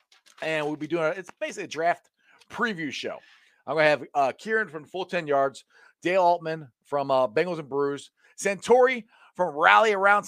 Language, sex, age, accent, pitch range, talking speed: English, male, 40-59, American, 135-180 Hz, 180 wpm